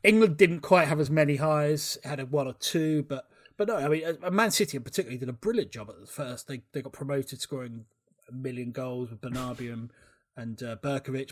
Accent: British